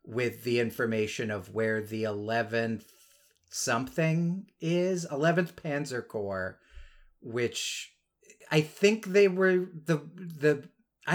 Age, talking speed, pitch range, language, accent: 40-59, 100 wpm, 120-170 Hz, English, American